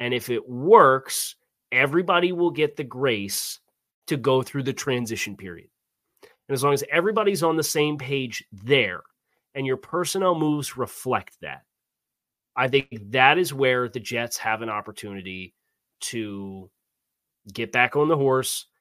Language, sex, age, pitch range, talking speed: English, male, 30-49, 120-145 Hz, 150 wpm